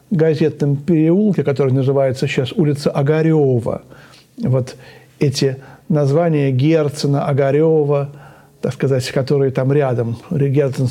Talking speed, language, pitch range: 100 wpm, Russian, 145-175 Hz